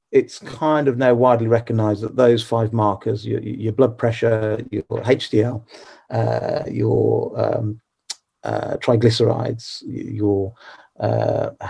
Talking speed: 120 wpm